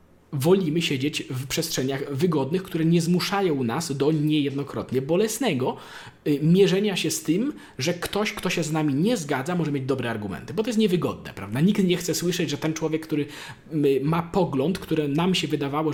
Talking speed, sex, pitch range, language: 175 wpm, male, 140-175 Hz, Polish